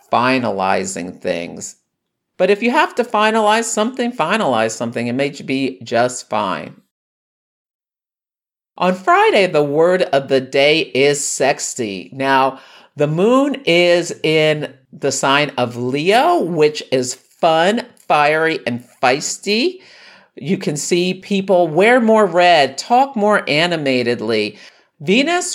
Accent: American